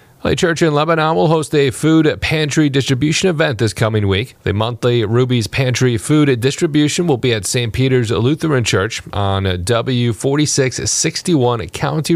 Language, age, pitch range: English, 30-49, 115-150 Hz